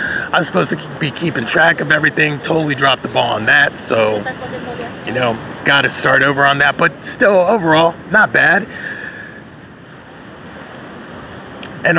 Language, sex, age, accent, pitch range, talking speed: English, male, 30-49, American, 140-180 Hz, 145 wpm